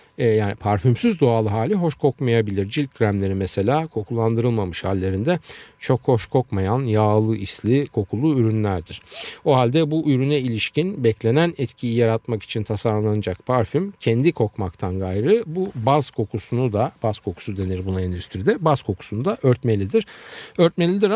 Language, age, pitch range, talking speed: Turkish, 50-69, 105-150 Hz, 130 wpm